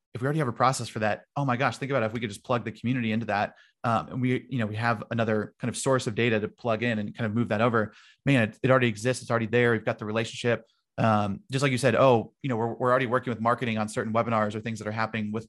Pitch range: 110-125 Hz